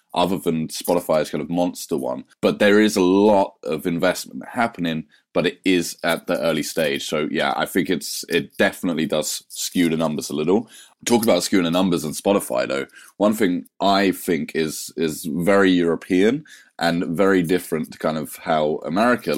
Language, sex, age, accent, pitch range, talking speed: English, male, 30-49, British, 85-105 Hz, 185 wpm